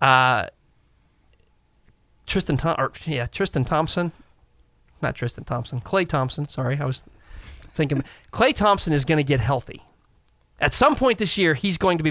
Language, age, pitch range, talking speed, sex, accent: English, 30-49, 145-185 Hz, 165 wpm, male, American